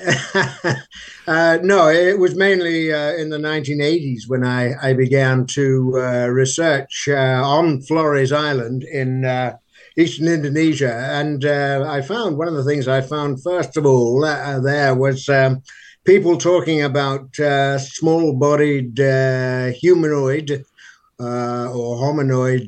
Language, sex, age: English, male, 60-79